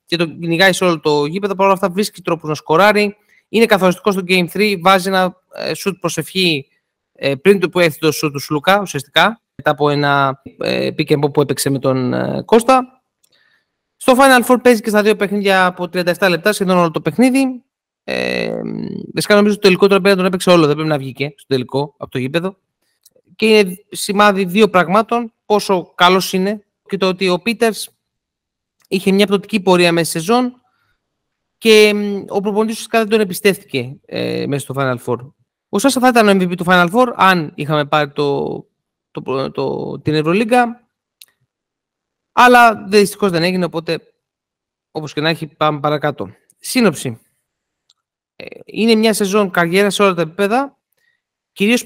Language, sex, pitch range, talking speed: Greek, male, 160-215 Hz, 170 wpm